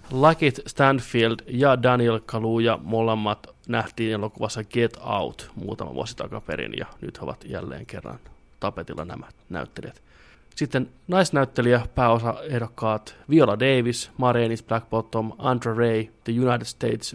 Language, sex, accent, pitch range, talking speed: Finnish, male, native, 110-130 Hz, 120 wpm